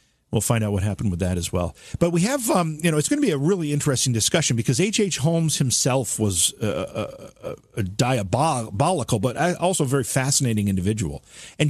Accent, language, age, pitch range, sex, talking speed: American, English, 50-69, 110-155 Hz, male, 205 wpm